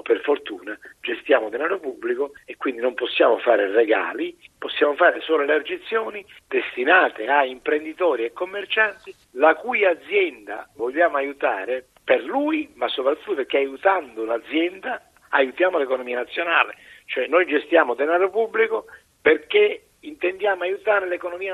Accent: native